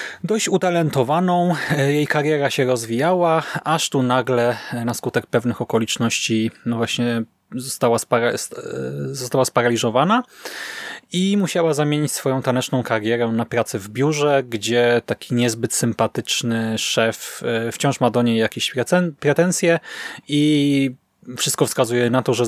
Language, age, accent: Polish, 20-39, native